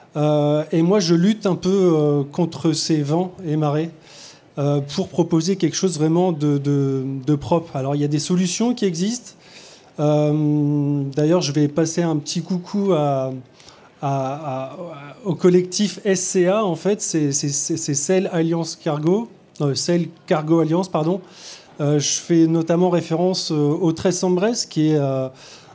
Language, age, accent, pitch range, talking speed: French, 20-39, French, 150-185 Hz, 160 wpm